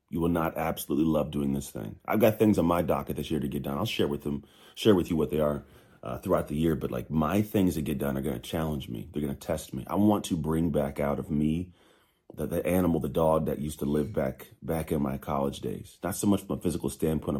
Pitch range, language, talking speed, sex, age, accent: 70-85 Hz, English, 275 wpm, male, 30-49, American